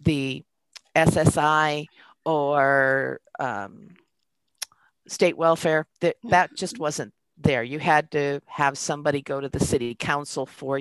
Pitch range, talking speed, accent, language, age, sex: 135-170 Hz, 120 wpm, American, English, 50-69, female